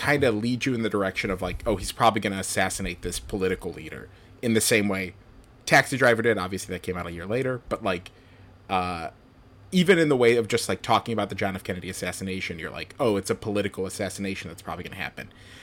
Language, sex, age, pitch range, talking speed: English, male, 30-49, 95-120 Hz, 235 wpm